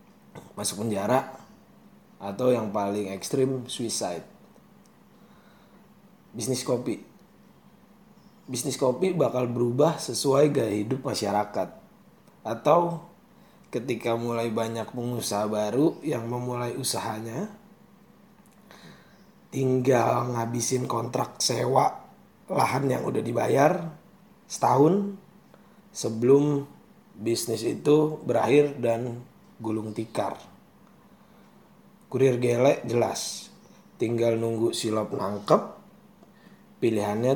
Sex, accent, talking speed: male, native, 80 wpm